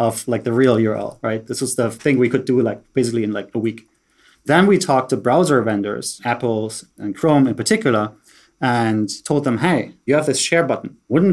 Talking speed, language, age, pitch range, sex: 210 wpm, English, 30-49, 110-135 Hz, male